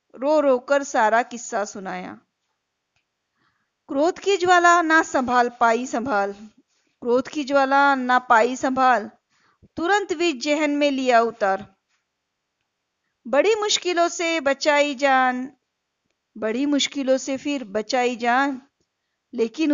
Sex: female